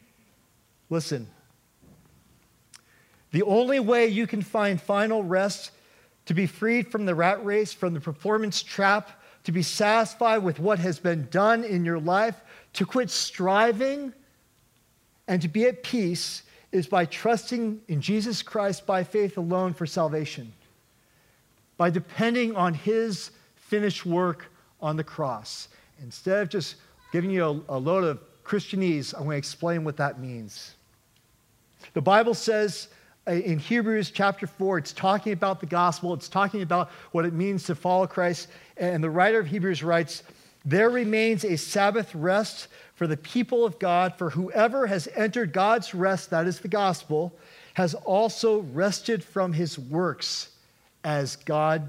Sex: male